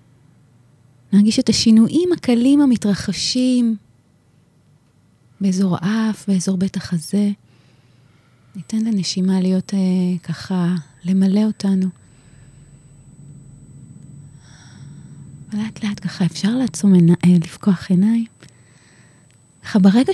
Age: 30-49